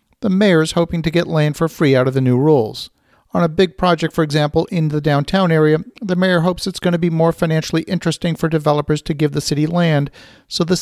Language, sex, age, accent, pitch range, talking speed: English, male, 50-69, American, 145-175 Hz, 240 wpm